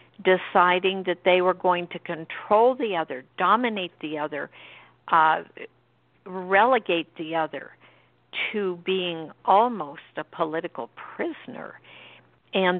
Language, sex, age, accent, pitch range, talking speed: English, female, 60-79, American, 165-195 Hz, 110 wpm